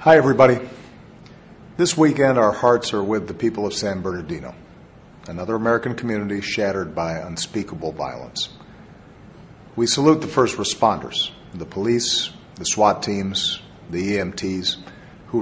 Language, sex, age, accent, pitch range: Chinese, male, 50-69, American, 95-120 Hz